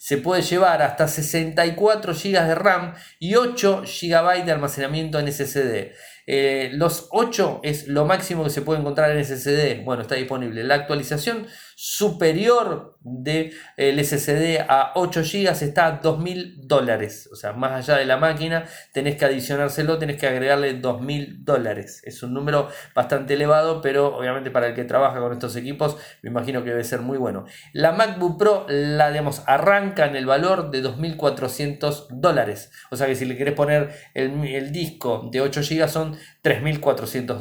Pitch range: 130-160 Hz